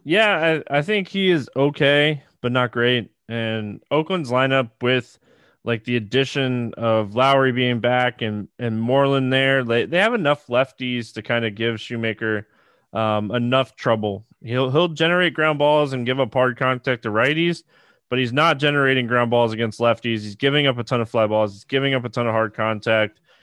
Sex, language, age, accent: male, English, 20-39, American